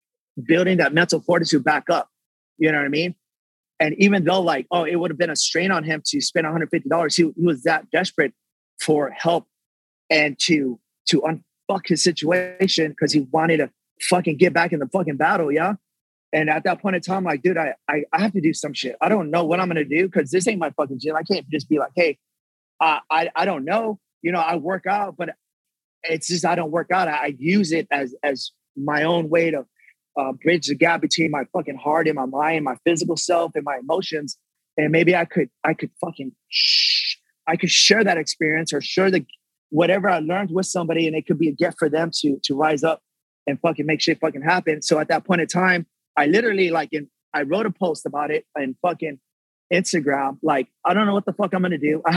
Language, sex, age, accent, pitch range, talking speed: English, male, 30-49, American, 155-180 Hz, 230 wpm